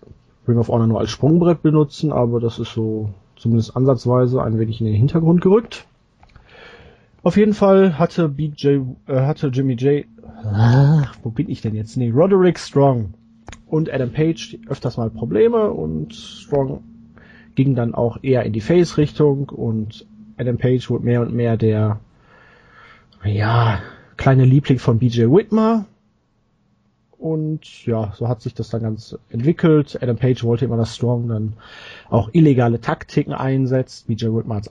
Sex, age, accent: male, 30-49, German